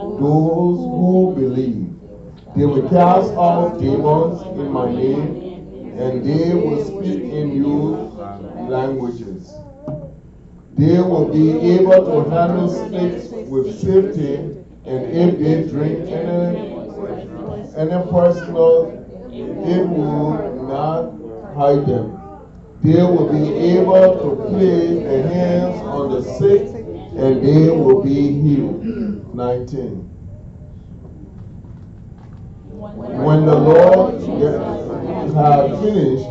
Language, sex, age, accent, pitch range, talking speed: English, male, 40-59, American, 130-175 Hz, 100 wpm